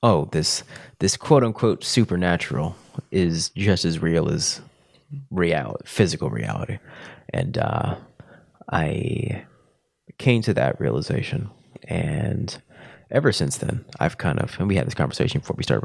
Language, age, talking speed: English, 30-49, 135 wpm